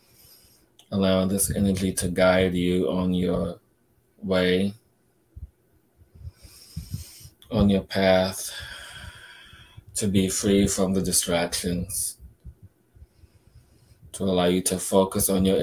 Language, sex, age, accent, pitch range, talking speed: English, male, 20-39, American, 95-100 Hz, 95 wpm